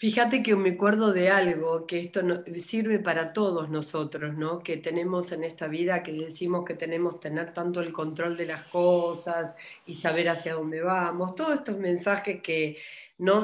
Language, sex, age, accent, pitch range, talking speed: Spanish, female, 40-59, Argentinian, 170-215 Hz, 180 wpm